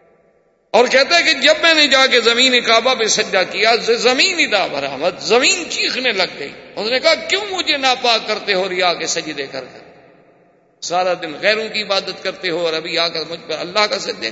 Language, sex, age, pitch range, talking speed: Urdu, male, 50-69, 160-245 Hz, 220 wpm